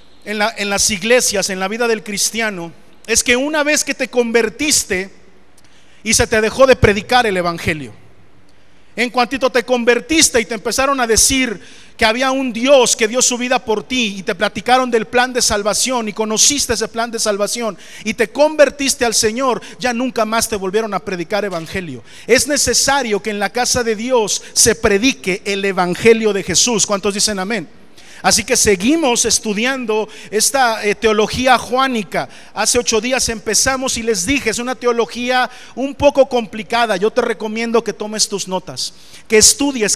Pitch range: 210-255 Hz